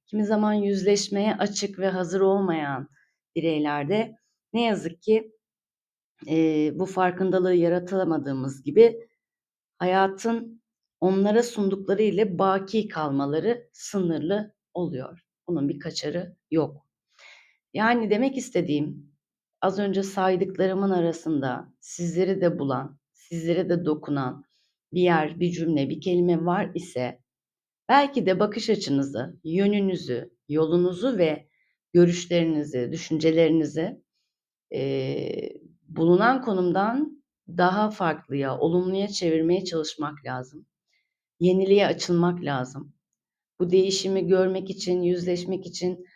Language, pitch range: Turkish, 160-195 Hz